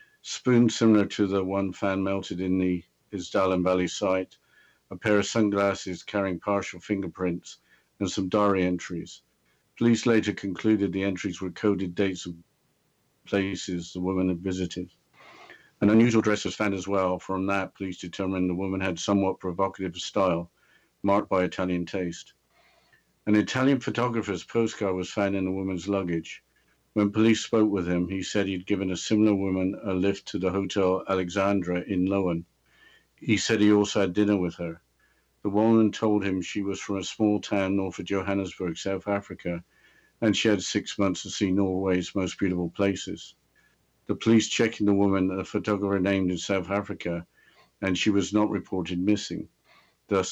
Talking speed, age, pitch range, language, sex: 170 wpm, 50-69, 90-105 Hz, English, male